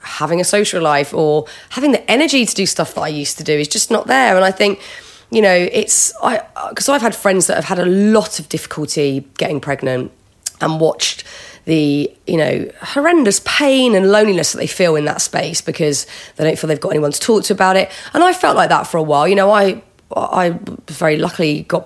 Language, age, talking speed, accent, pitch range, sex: English, 30-49, 230 wpm, British, 160-205 Hz, female